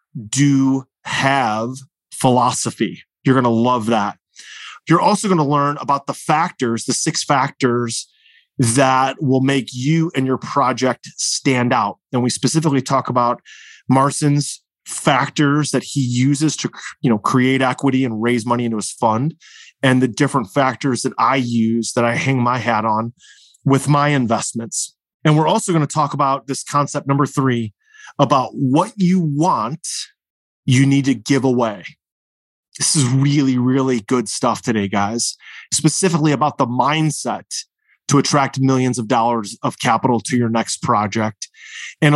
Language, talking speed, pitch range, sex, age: English, 155 wpm, 120-145 Hz, male, 30-49